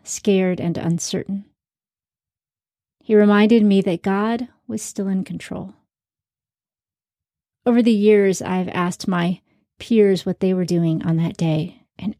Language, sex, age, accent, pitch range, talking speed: English, female, 30-49, American, 185-215 Hz, 140 wpm